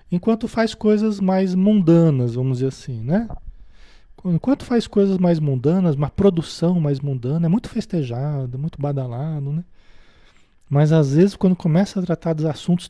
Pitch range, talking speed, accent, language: 140-195 Hz, 155 wpm, Brazilian, Portuguese